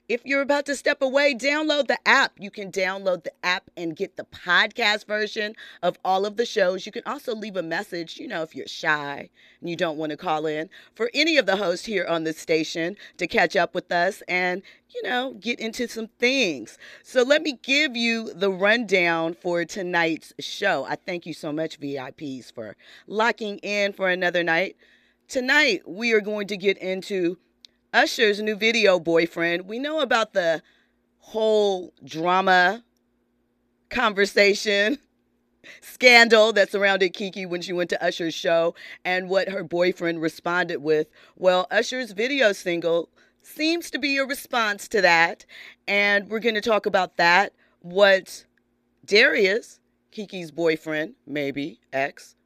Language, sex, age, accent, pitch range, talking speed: English, female, 40-59, American, 170-230 Hz, 165 wpm